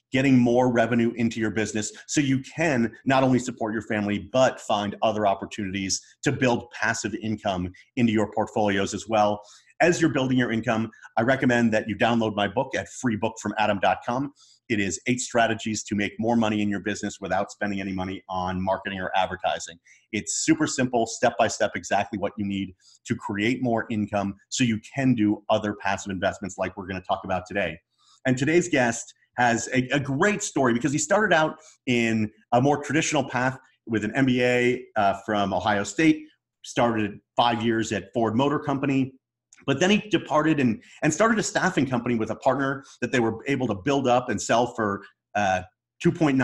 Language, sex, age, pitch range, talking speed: English, male, 30-49, 105-130 Hz, 180 wpm